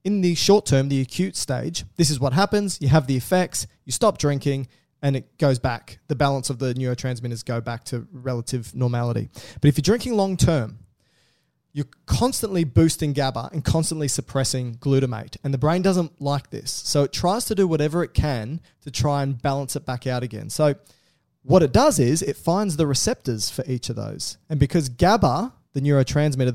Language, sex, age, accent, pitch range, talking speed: English, male, 20-39, Australian, 125-160 Hz, 195 wpm